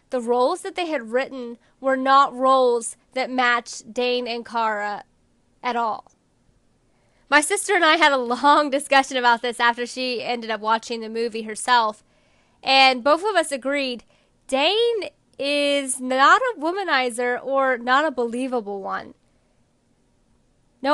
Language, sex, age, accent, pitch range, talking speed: English, female, 10-29, American, 240-290 Hz, 145 wpm